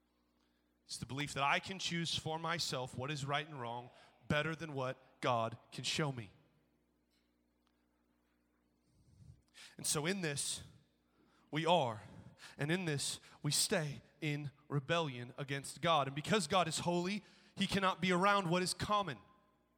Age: 30-49